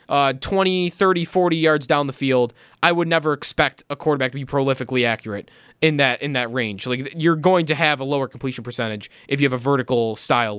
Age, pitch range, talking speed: 20-39, 130-170 Hz, 215 wpm